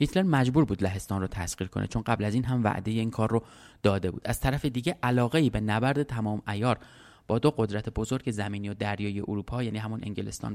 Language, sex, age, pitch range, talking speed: Persian, male, 30-49, 105-130 Hz, 215 wpm